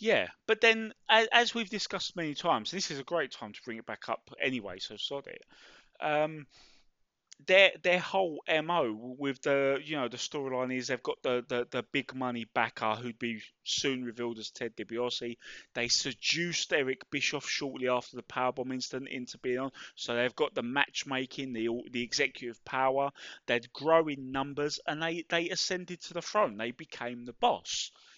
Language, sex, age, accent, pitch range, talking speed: English, male, 20-39, British, 125-170 Hz, 180 wpm